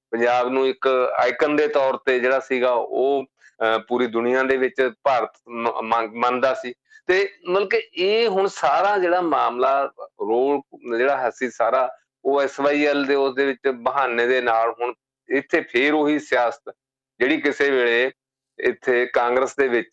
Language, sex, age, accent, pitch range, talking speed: English, male, 40-59, Indian, 125-160 Hz, 115 wpm